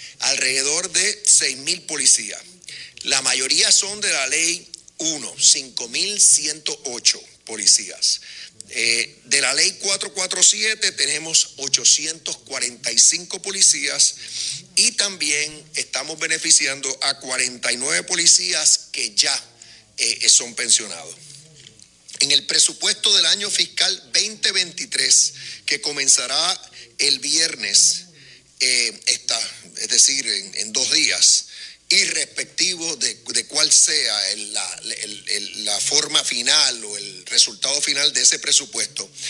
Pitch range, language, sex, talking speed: 135-180 Hz, Spanish, male, 110 wpm